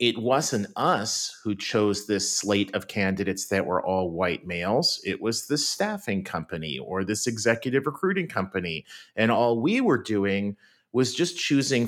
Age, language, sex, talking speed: 40-59, English, male, 160 wpm